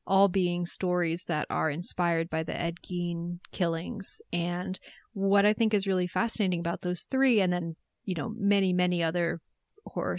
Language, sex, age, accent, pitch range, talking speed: English, female, 30-49, American, 175-200 Hz, 170 wpm